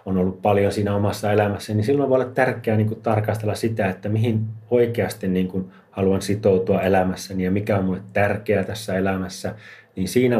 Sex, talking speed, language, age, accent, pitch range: male, 175 wpm, Finnish, 30-49, native, 95-110 Hz